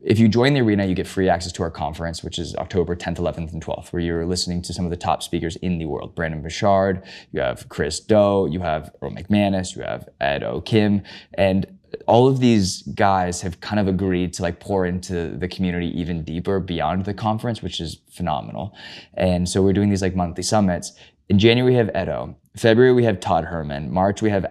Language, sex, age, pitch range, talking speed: English, male, 20-39, 85-105 Hz, 220 wpm